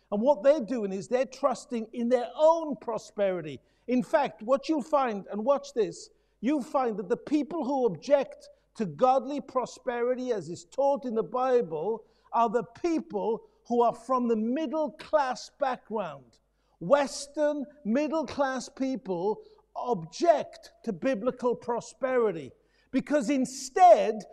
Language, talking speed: English, 130 wpm